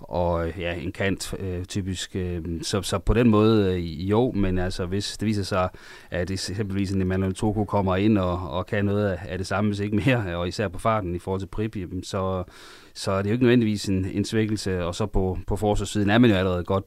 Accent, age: native, 30-49